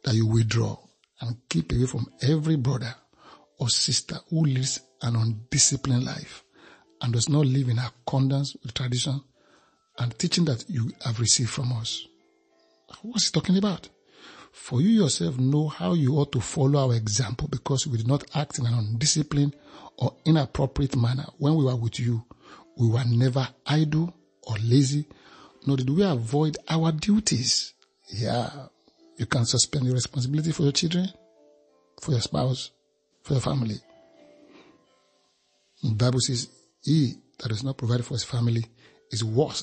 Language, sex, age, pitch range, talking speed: English, male, 60-79, 120-150 Hz, 155 wpm